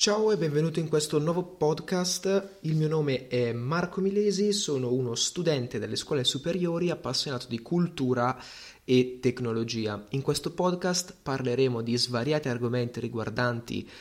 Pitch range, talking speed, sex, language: 115-150 Hz, 135 wpm, male, Italian